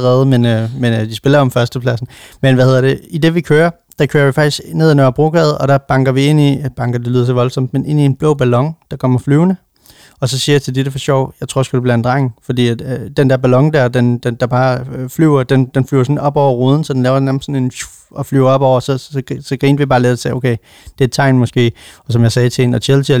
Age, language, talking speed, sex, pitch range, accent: 30-49, Danish, 300 wpm, male, 125-140 Hz, native